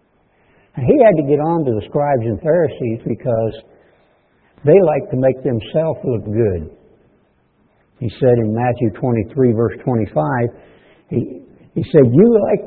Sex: male